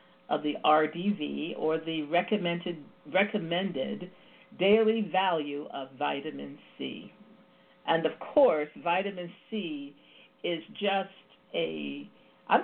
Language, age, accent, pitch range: English, 50-69, American, 155-220 Hz